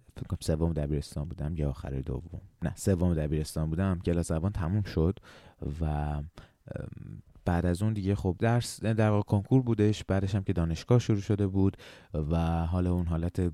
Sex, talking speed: male, 160 wpm